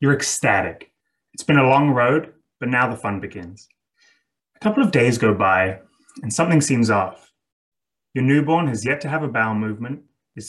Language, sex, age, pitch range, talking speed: English, male, 20-39, 105-145 Hz, 185 wpm